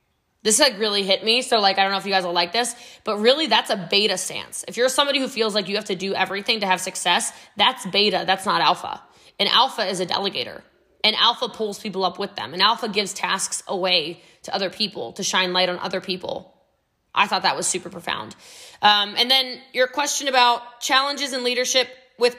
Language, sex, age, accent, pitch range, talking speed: English, female, 20-39, American, 195-250 Hz, 220 wpm